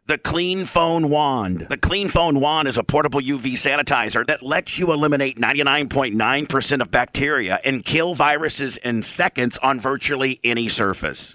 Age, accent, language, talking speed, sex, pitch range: 50-69, American, English, 155 wpm, male, 125-155 Hz